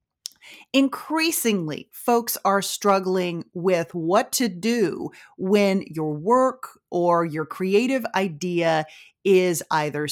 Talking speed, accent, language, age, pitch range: 100 wpm, American, English, 40-59, 175-250 Hz